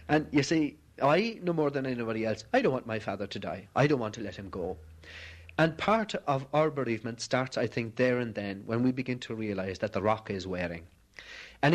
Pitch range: 110-150 Hz